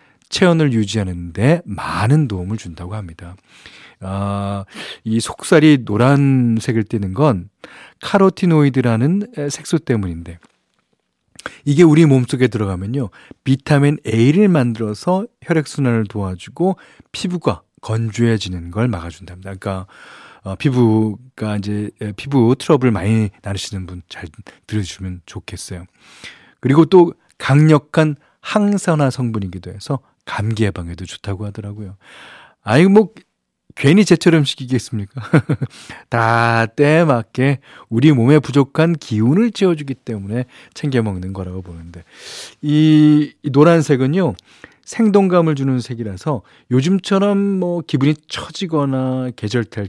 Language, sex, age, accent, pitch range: Korean, male, 40-59, native, 100-150 Hz